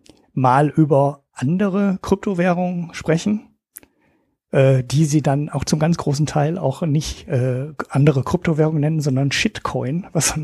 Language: German